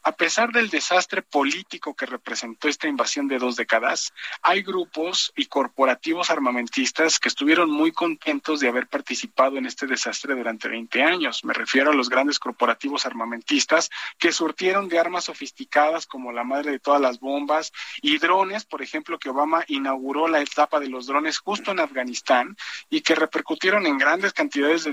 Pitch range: 130-175 Hz